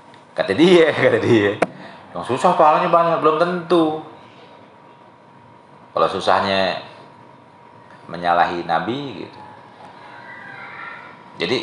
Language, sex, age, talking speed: Malay, male, 30-49, 85 wpm